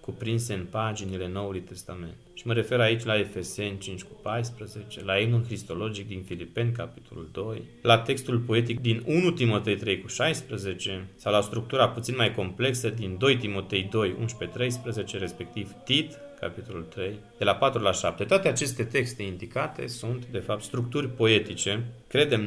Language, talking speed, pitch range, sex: Romanian, 160 wpm, 105-135 Hz, male